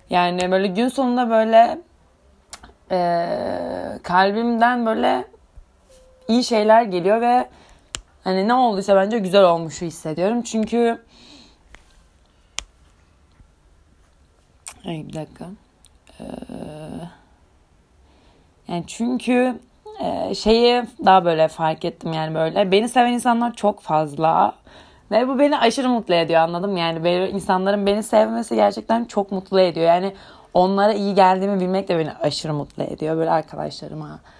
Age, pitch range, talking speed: 30-49, 155-215 Hz, 115 wpm